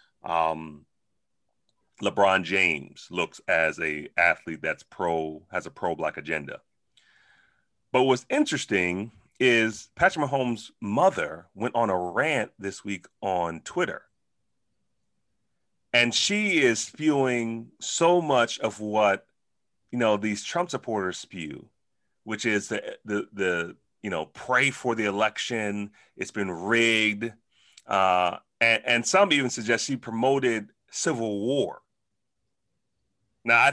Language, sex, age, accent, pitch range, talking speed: English, male, 30-49, American, 100-120 Hz, 120 wpm